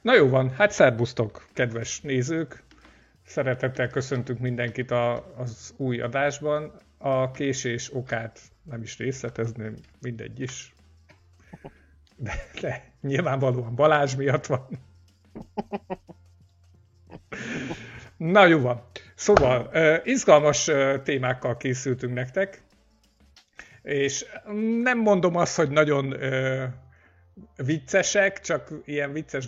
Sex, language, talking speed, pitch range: male, Hungarian, 95 wpm, 110-145 Hz